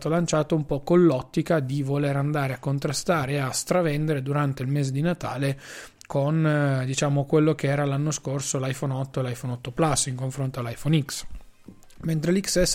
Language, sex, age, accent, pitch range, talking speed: Italian, male, 20-39, native, 140-170 Hz, 175 wpm